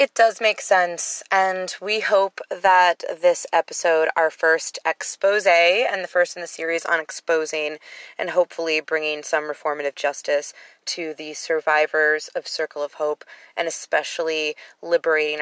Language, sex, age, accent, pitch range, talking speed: English, female, 20-39, American, 145-170 Hz, 145 wpm